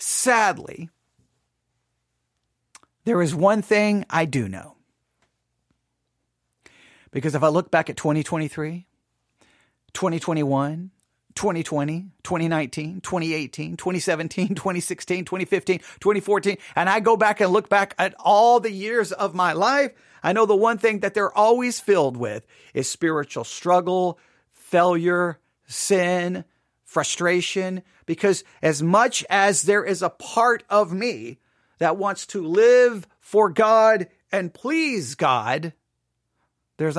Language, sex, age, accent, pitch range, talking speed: English, male, 40-59, American, 165-220 Hz, 120 wpm